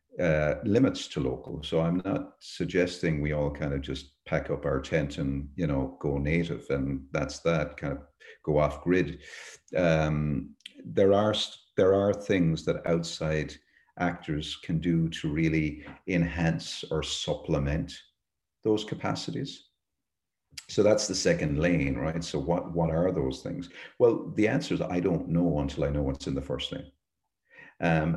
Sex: male